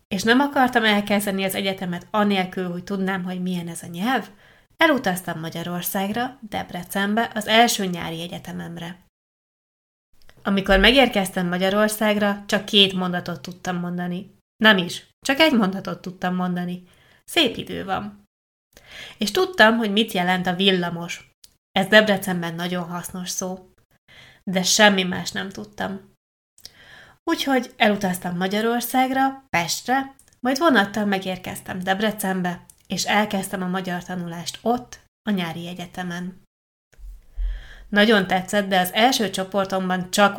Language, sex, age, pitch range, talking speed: Hungarian, female, 20-39, 180-210 Hz, 120 wpm